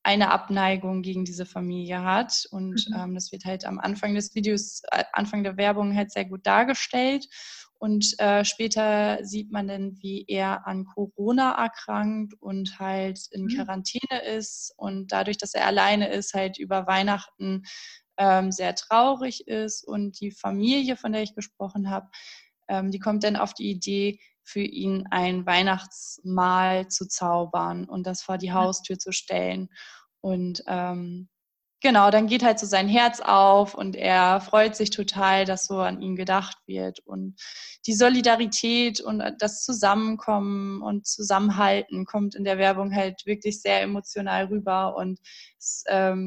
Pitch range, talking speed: 190-215 Hz, 155 wpm